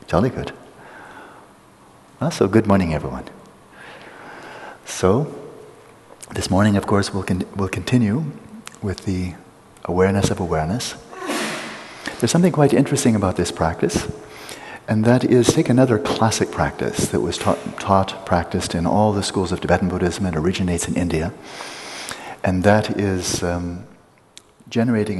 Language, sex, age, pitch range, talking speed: English, male, 60-79, 90-110 Hz, 130 wpm